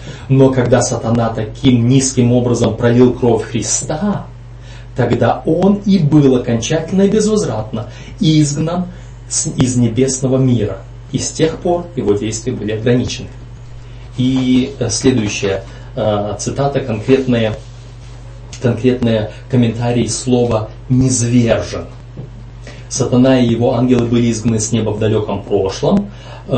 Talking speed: 105 wpm